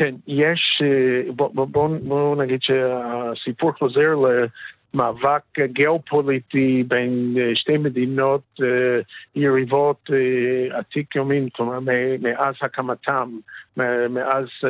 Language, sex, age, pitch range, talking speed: Hebrew, male, 50-69, 125-145 Hz, 85 wpm